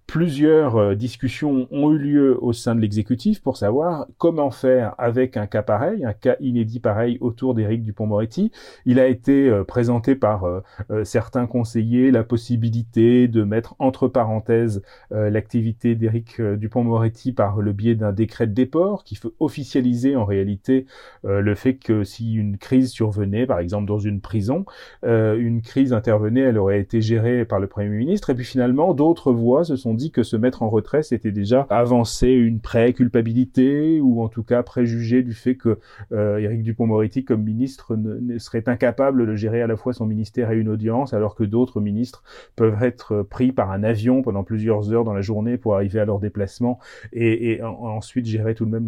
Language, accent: French, French